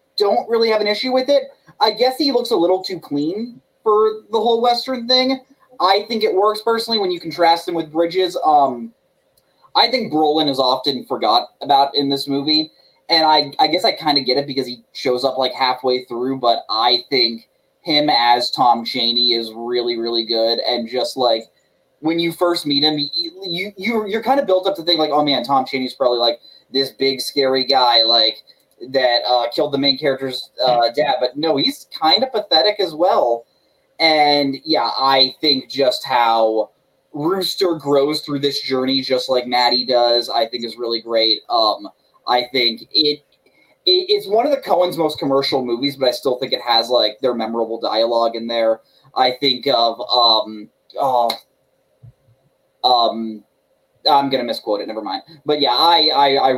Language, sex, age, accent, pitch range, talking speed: English, male, 20-39, American, 120-180 Hz, 190 wpm